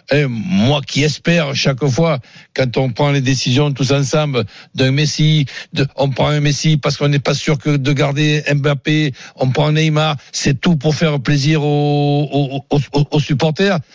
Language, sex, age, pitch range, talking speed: French, male, 60-79, 140-160 Hz, 180 wpm